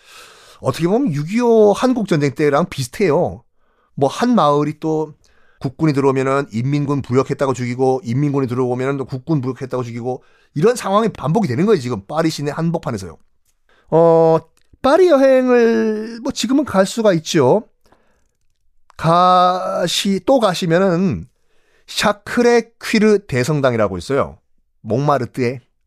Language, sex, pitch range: Korean, male, 120-185 Hz